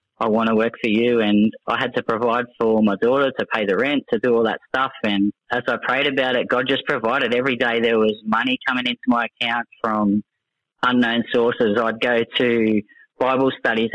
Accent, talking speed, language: Australian, 210 wpm, English